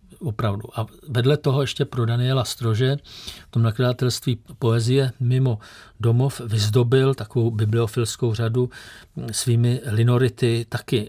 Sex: male